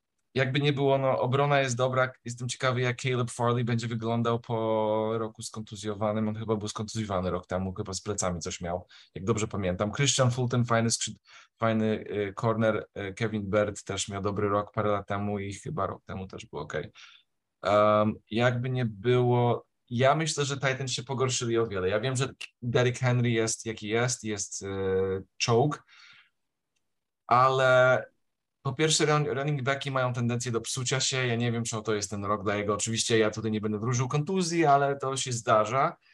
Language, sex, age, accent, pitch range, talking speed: Polish, male, 20-39, native, 105-130 Hz, 185 wpm